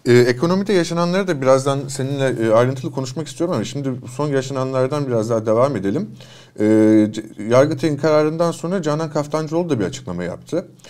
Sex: male